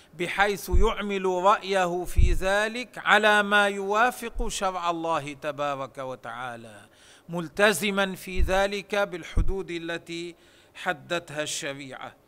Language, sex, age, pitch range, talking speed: Arabic, male, 40-59, 155-180 Hz, 95 wpm